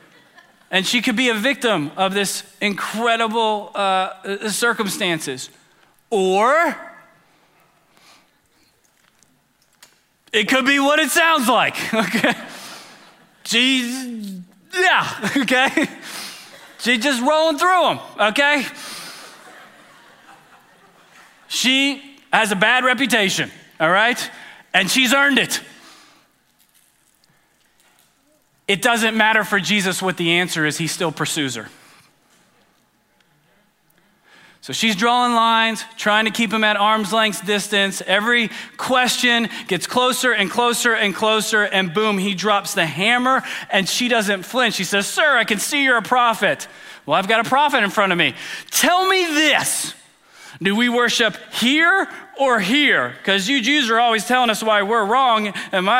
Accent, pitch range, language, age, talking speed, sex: American, 200-255 Hz, English, 30-49, 130 wpm, male